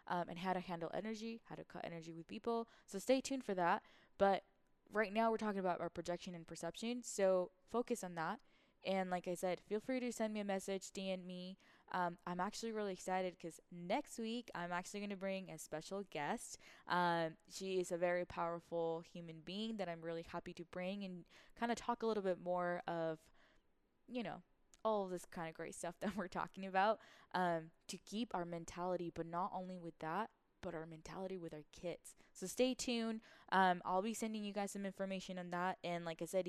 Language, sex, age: English, female, 10-29